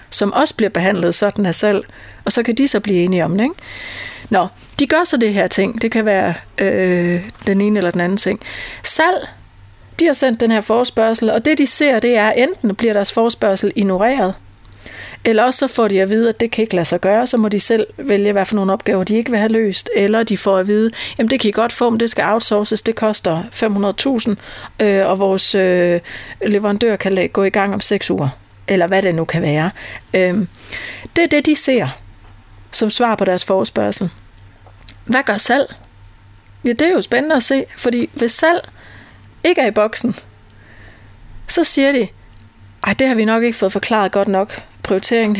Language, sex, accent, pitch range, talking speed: Danish, female, native, 185-230 Hz, 210 wpm